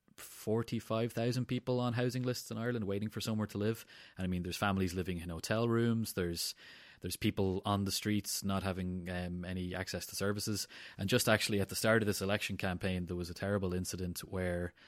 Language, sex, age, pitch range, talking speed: English, male, 20-39, 90-105 Hz, 200 wpm